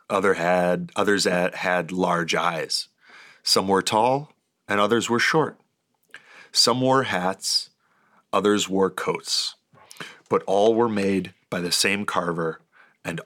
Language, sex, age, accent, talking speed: English, male, 40-59, American, 120 wpm